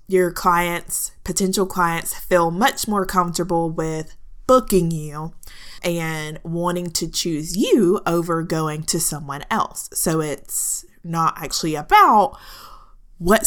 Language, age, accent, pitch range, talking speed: English, 20-39, American, 155-190 Hz, 120 wpm